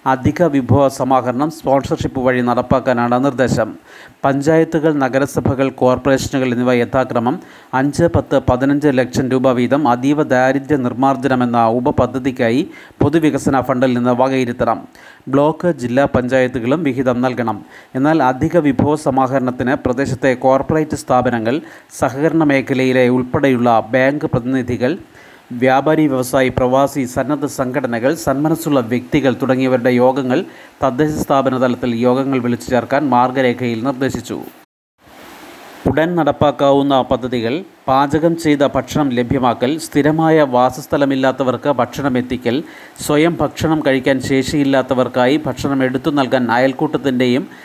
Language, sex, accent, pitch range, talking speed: Malayalam, male, native, 125-145 Hz, 100 wpm